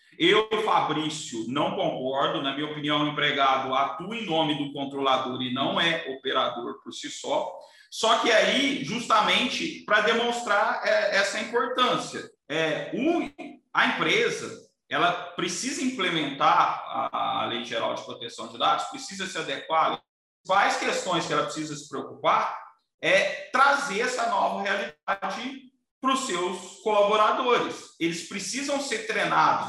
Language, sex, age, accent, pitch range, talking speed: Portuguese, male, 40-59, Brazilian, 160-245 Hz, 130 wpm